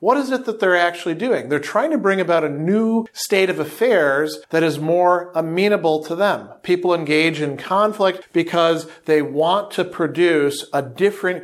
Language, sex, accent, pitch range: English, male, American, 155-205 Hz